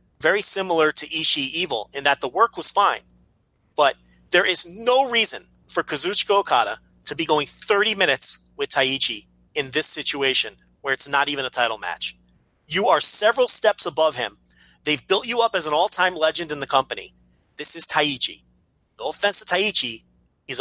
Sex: male